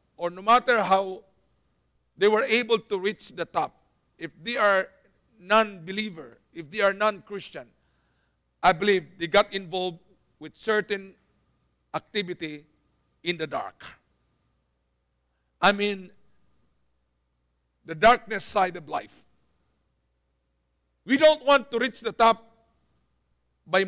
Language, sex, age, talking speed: English, male, 50-69, 115 wpm